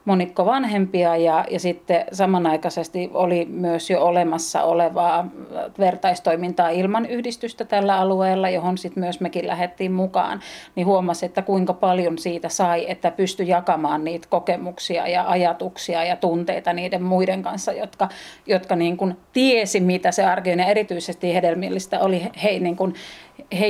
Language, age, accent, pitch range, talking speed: Finnish, 40-59, native, 175-195 Hz, 140 wpm